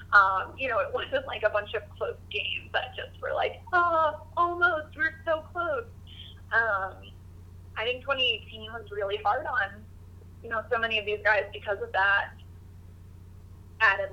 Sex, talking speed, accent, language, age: female, 165 wpm, American, English, 20-39